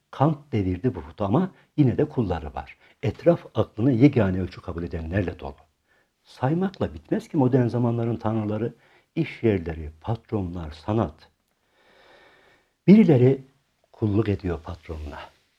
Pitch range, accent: 90-130 Hz, native